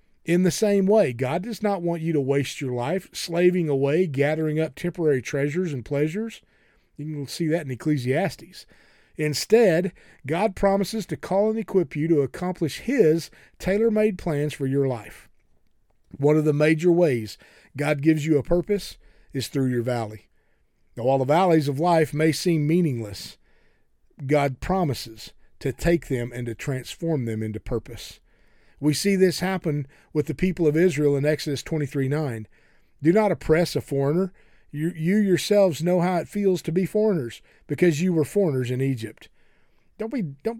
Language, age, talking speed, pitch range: English, 40-59, 165 wpm, 135-185 Hz